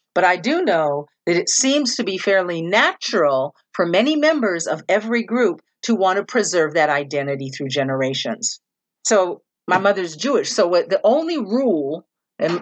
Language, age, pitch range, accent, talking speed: English, 50-69, 160-220 Hz, American, 160 wpm